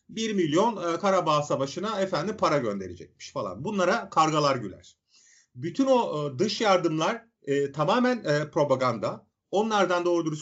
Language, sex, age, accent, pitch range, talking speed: Turkish, male, 40-59, native, 145-230 Hz, 110 wpm